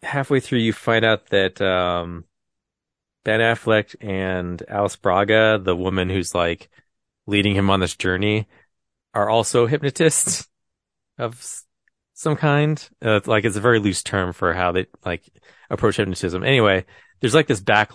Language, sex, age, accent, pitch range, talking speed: English, male, 30-49, American, 90-110 Hz, 150 wpm